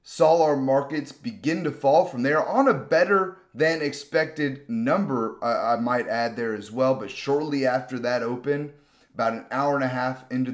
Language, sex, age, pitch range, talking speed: English, male, 30-49, 125-155 Hz, 190 wpm